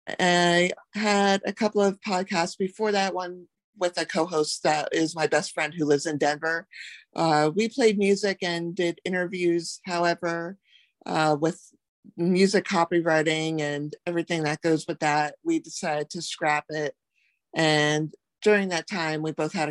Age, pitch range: 50-69, 150-195 Hz